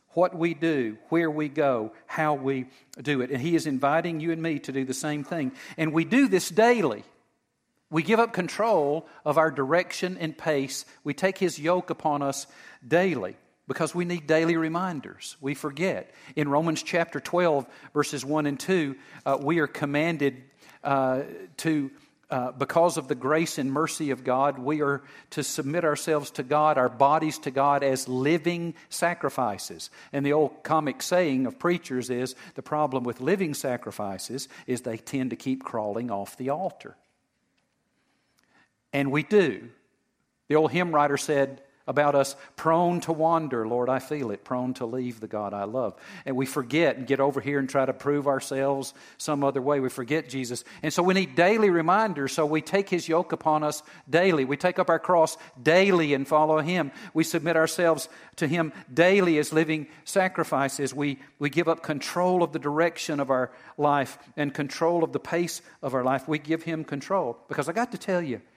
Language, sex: English, male